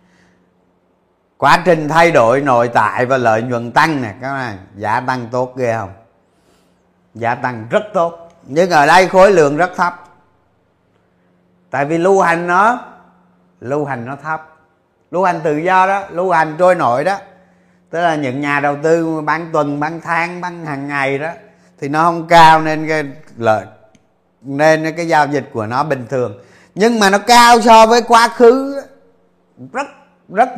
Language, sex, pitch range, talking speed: Vietnamese, male, 125-175 Hz, 170 wpm